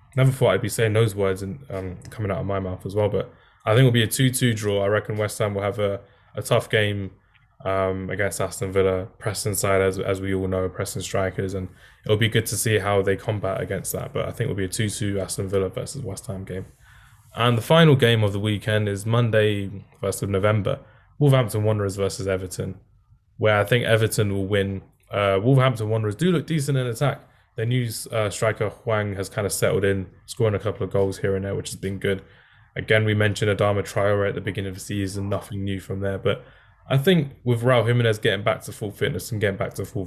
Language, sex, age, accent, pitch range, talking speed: English, male, 10-29, British, 95-115 Hz, 230 wpm